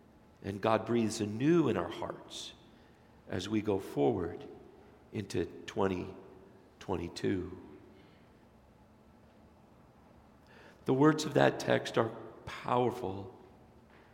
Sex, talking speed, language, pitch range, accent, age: male, 85 wpm, English, 110-125 Hz, American, 50-69